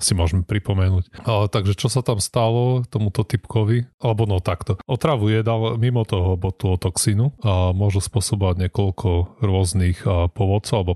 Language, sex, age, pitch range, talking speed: Slovak, male, 30-49, 90-110 Hz, 150 wpm